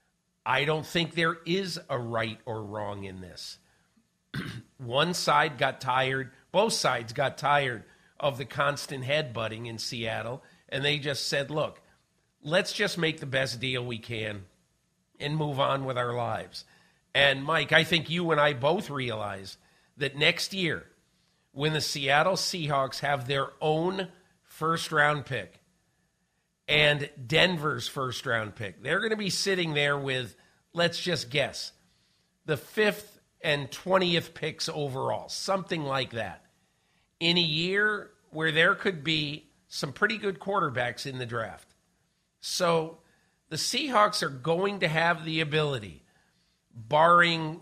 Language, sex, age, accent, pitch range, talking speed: English, male, 50-69, American, 130-165 Hz, 140 wpm